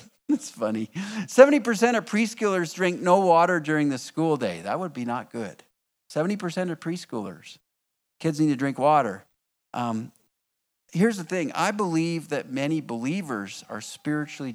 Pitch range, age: 120-170 Hz, 50-69